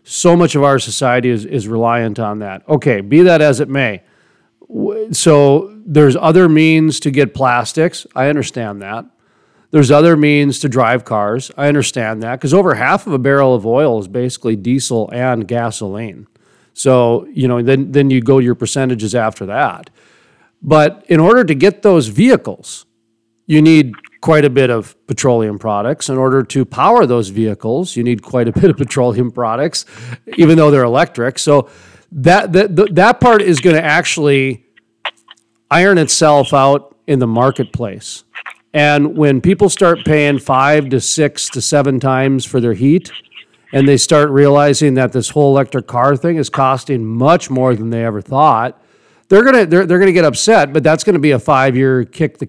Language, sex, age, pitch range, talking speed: English, male, 40-59, 120-155 Hz, 180 wpm